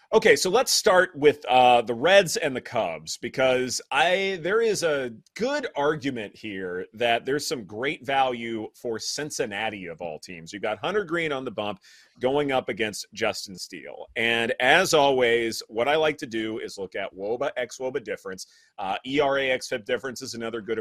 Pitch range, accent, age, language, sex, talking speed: 110-155 Hz, American, 30-49, English, male, 185 wpm